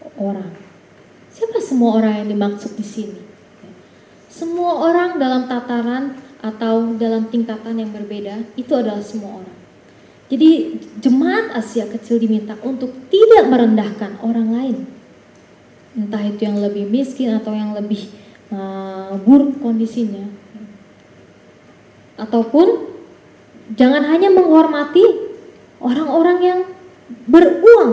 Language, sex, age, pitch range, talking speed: Indonesian, female, 20-39, 210-270 Hz, 105 wpm